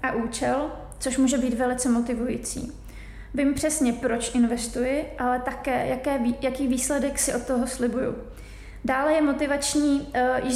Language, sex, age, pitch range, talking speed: Czech, female, 30-49, 250-280 Hz, 130 wpm